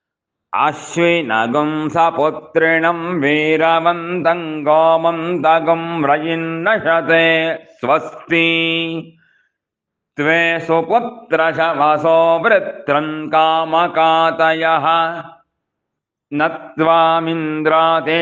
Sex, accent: male, Indian